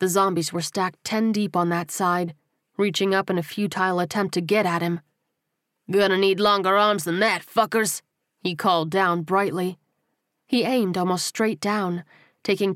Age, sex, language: 30-49, female, English